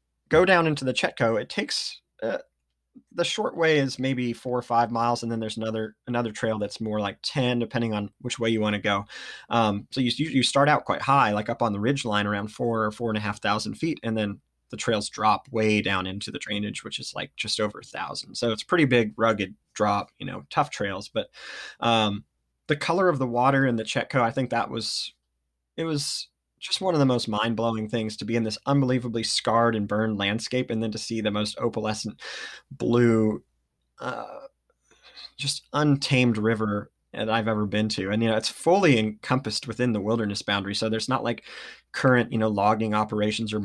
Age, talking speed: 20-39, 210 wpm